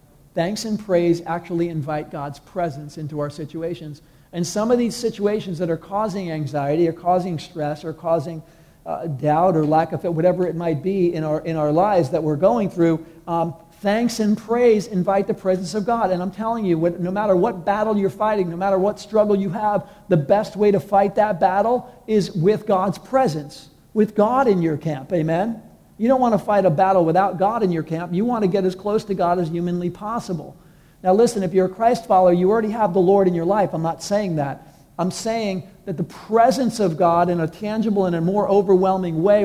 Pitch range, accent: 165-205 Hz, American